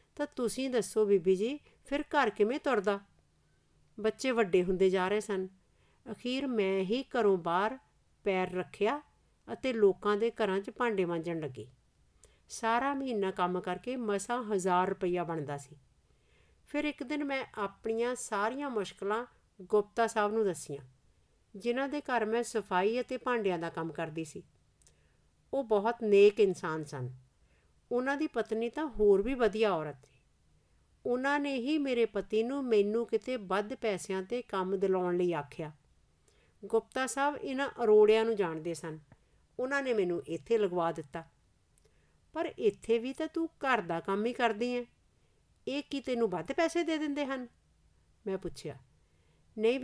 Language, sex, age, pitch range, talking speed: Punjabi, female, 50-69, 180-250 Hz, 135 wpm